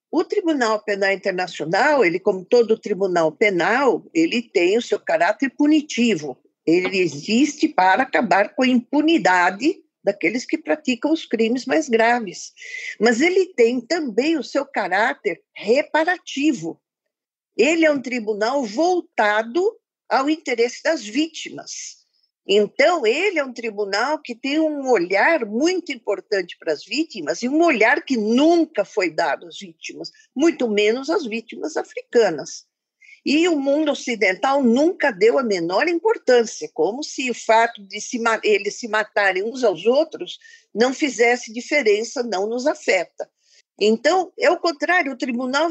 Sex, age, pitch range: female, 50-69, 220-330 Hz